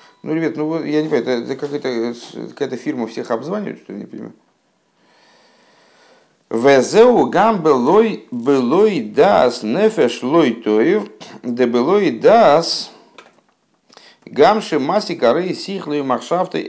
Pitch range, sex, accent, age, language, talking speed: 125-165 Hz, male, native, 50-69, Russian, 120 wpm